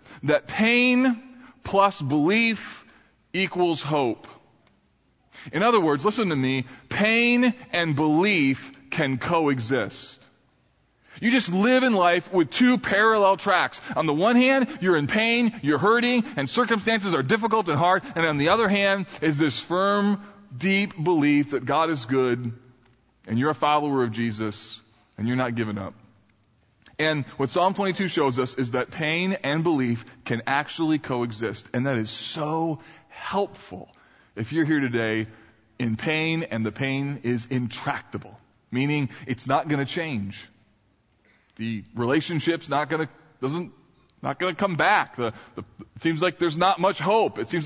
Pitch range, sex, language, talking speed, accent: 125-190 Hz, male, English, 155 wpm, American